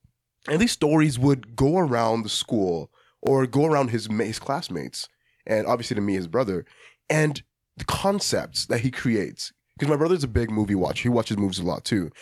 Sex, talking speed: male, 190 wpm